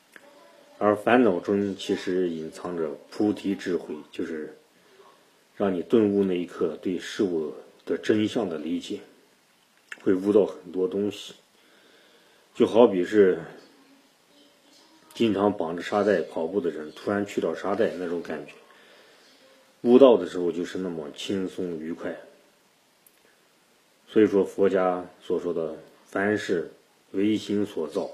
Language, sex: Chinese, male